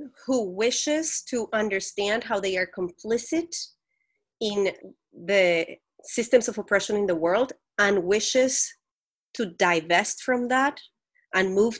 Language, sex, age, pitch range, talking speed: English, female, 30-49, 185-245 Hz, 120 wpm